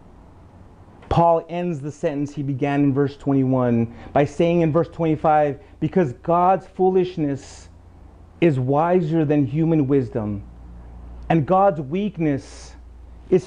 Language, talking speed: English, 115 wpm